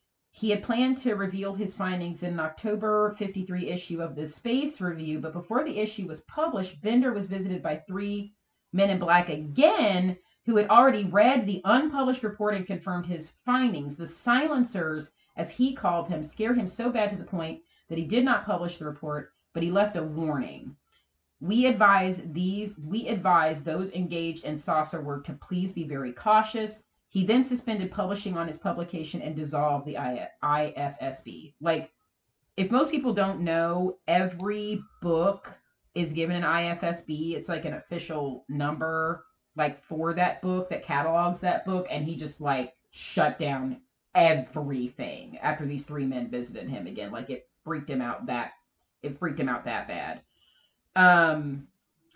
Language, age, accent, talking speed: English, 40-59, American, 165 wpm